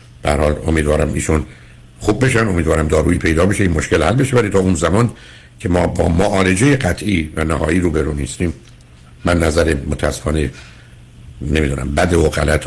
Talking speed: 160 wpm